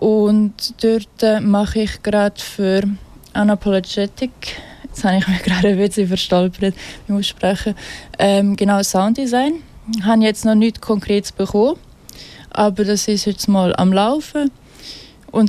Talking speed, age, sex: 135 wpm, 20-39, female